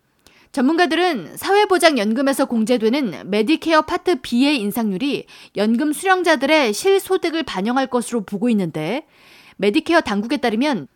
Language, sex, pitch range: Korean, female, 230-325 Hz